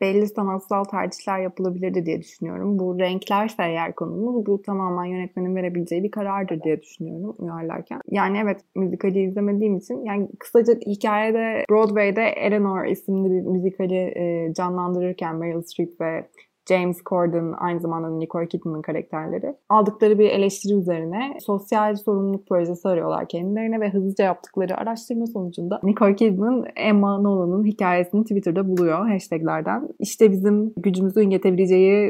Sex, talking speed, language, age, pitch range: female, 130 wpm, Turkish, 20-39, 175-210 Hz